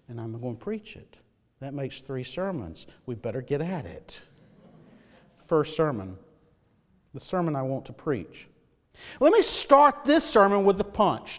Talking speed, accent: 165 wpm, American